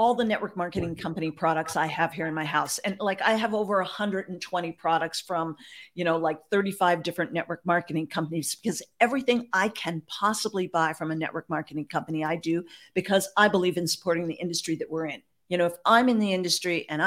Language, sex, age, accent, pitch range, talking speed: English, female, 50-69, American, 165-225 Hz, 205 wpm